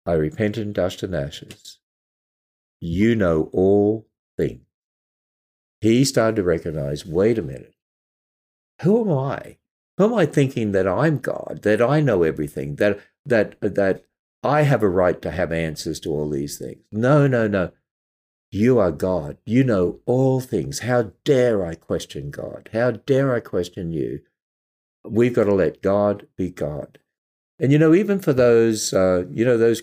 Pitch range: 90-115 Hz